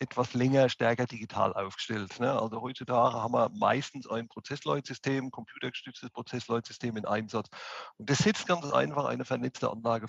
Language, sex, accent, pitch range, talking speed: German, male, German, 120-145 Hz, 150 wpm